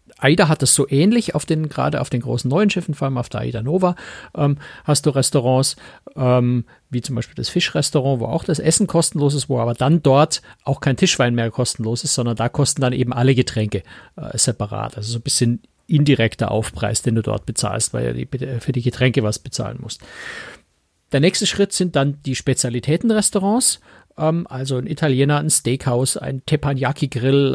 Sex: male